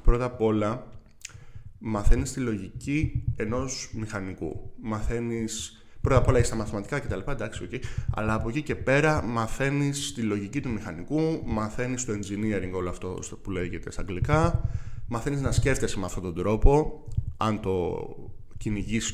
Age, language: 20-39, Greek